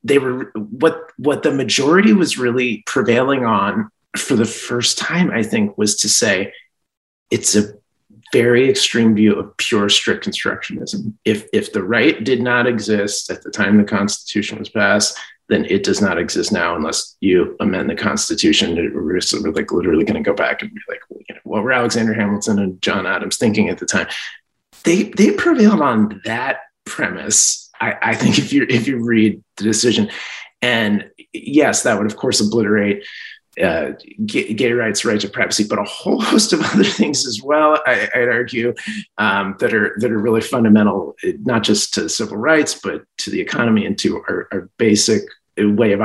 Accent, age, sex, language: American, 30-49, male, English